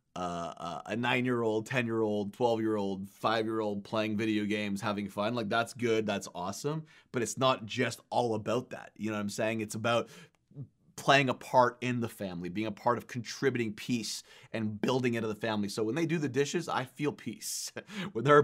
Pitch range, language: 105-125 Hz, English